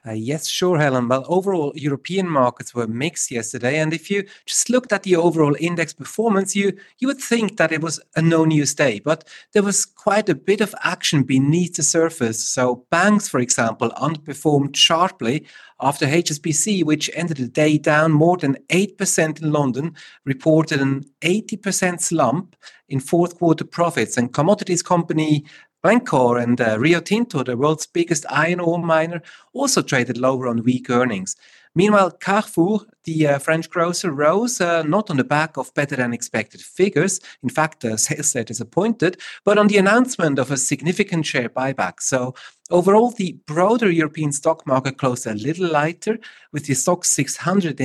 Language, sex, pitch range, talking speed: English, male, 135-180 Hz, 170 wpm